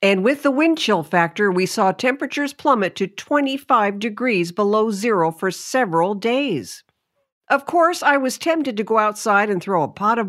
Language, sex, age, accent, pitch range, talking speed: English, female, 50-69, American, 170-240 Hz, 180 wpm